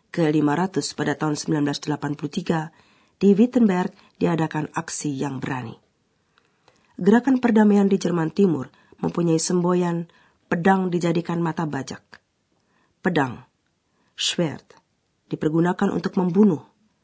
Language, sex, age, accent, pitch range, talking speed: Indonesian, female, 40-59, native, 155-200 Hz, 90 wpm